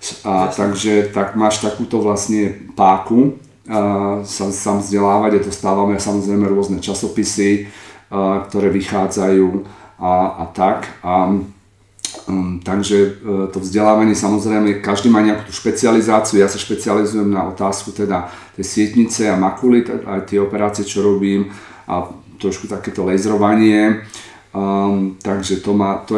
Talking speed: 130 wpm